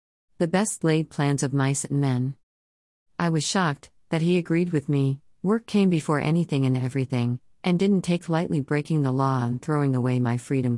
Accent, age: American, 50-69